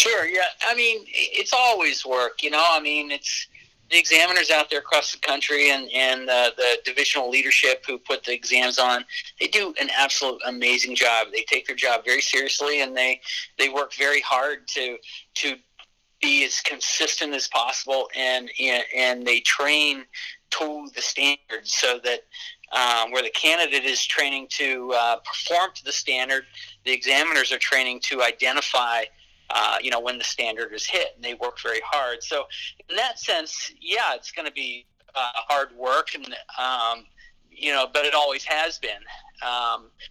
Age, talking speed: 40-59, 175 wpm